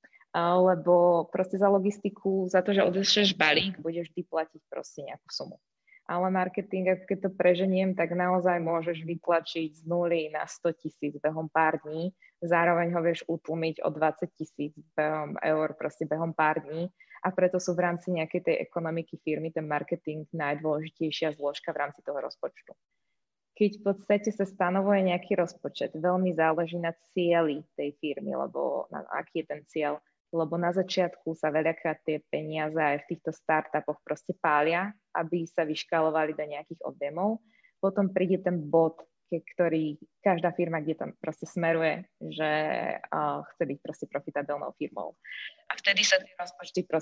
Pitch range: 155-180 Hz